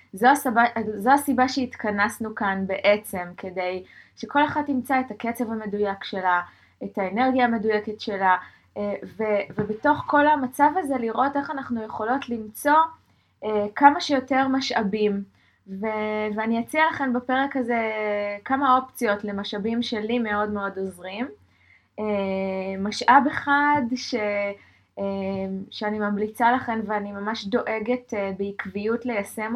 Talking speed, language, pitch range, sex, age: 115 wpm, Hebrew, 205-250 Hz, female, 20-39